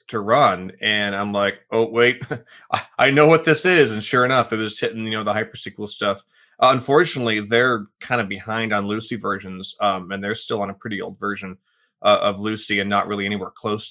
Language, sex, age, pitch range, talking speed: English, male, 20-39, 100-115 Hz, 215 wpm